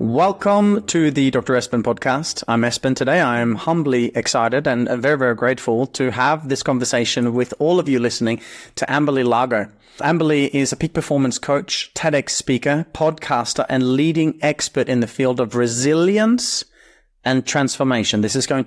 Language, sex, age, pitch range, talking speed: English, male, 30-49, 120-140 Hz, 165 wpm